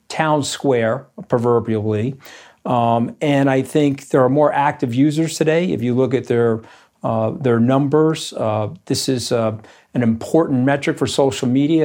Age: 50-69